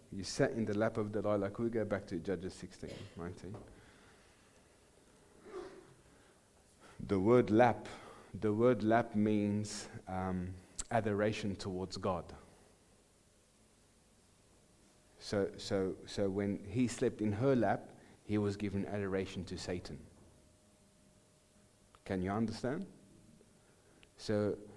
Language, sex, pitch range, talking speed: English, male, 95-110 Hz, 110 wpm